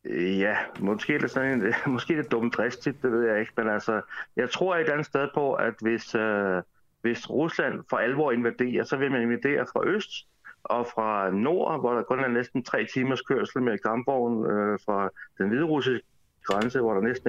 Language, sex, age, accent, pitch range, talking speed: Danish, male, 60-79, native, 110-125 Hz, 190 wpm